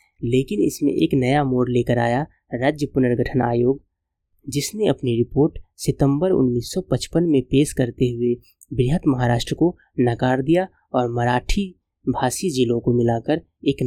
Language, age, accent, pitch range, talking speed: Hindi, 20-39, native, 120-145 Hz, 135 wpm